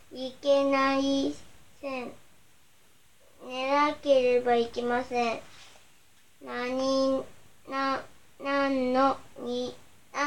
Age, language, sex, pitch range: 20-39, Japanese, male, 265-295 Hz